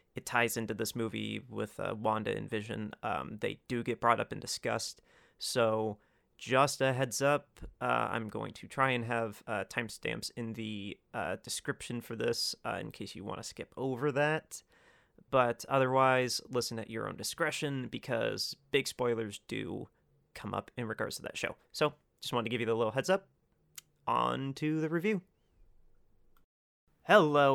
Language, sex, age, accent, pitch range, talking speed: English, male, 30-49, American, 120-145 Hz, 175 wpm